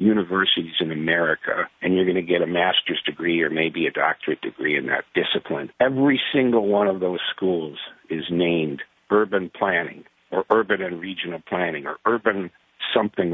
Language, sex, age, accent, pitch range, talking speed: English, male, 50-69, American, 85-115 Hz, 165 wpm